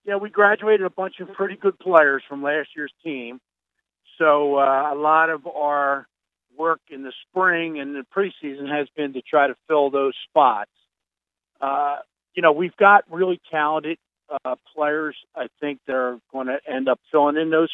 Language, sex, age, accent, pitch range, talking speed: English, male, 50-69, American, 140-175 Hz, 180 wpm